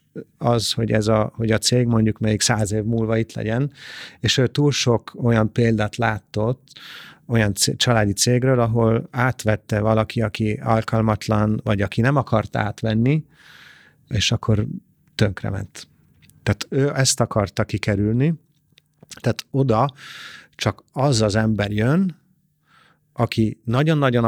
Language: Hungarian